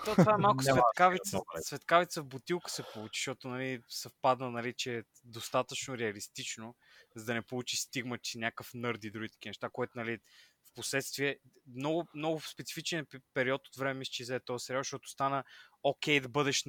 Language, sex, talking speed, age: Bulgarian, male, 175 wpm, 20-39